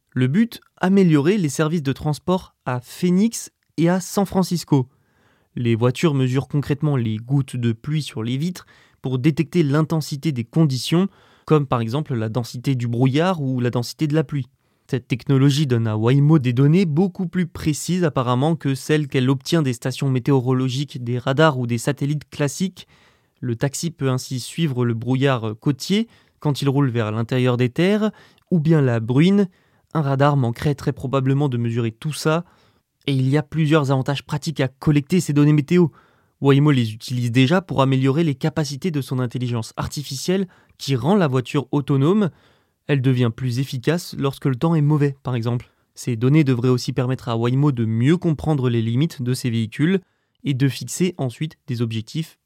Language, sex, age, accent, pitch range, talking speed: French, male, 20-39, French, 130-160 Hz, 175 wpm